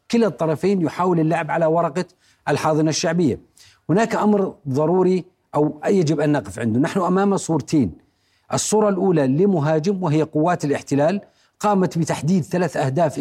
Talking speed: 130 wpm